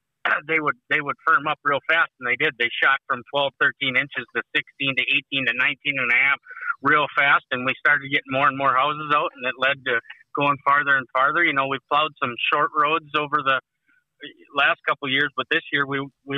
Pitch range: 135-150 Hz